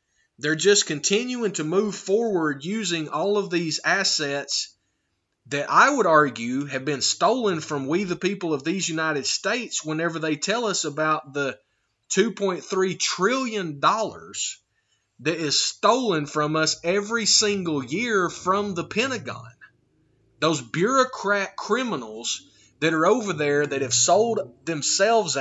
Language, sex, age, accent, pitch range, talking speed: English, male, 30-49, American, 145-205 Hz, 130 wpm